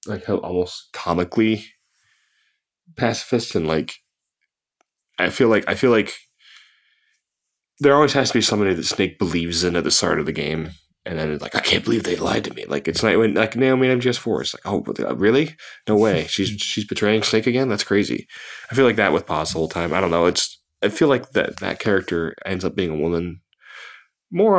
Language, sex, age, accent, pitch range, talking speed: English, male, 20-39, American, 85-120 Hz, 210 wpm